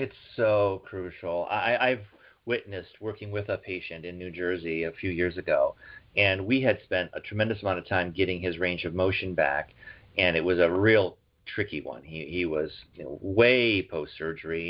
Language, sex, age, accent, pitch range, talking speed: English, male, 40-59, American, 95-120 Hz, 175 wpm